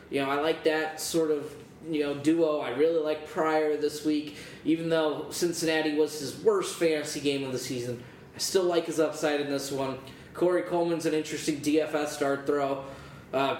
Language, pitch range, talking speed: English, 140-165 Hz, 190 wpm